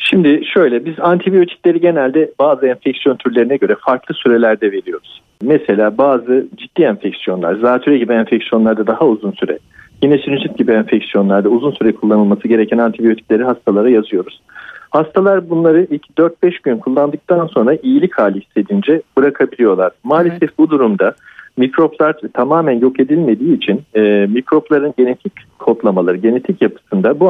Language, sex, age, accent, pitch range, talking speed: Turkish, male, 50-69, native, 115-175 Hz, 130 wpm